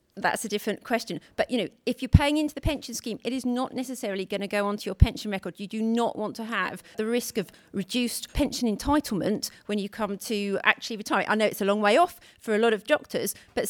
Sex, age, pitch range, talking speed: female, 40-59, 200-230 Hz, 245 wpm